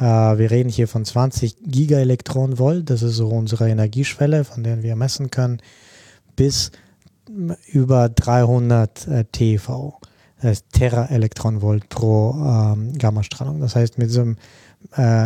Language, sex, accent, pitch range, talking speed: German, male, German, 110-130 Hz, 120 wpm